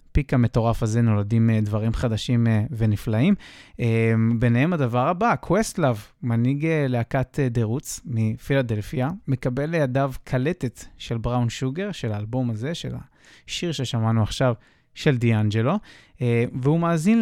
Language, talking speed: Hebrew, 110 wpm